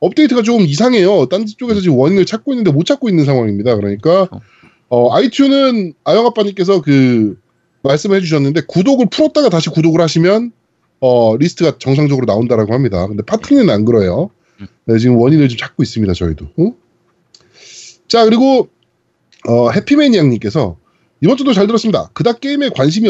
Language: Korean